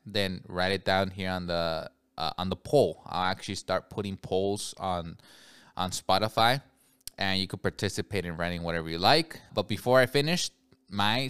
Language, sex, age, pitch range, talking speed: English, male, 20-39, 95-125 Hz, 175 wpm